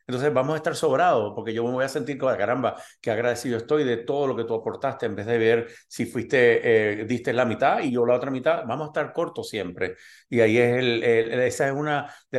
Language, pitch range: Spanish, 110-145 Hz